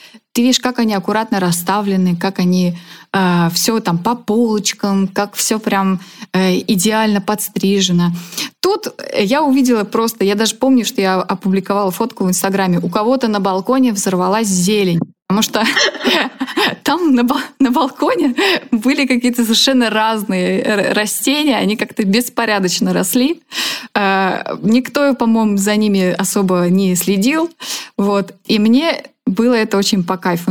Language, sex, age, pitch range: Russian, female, 20-39, 195-250 Hz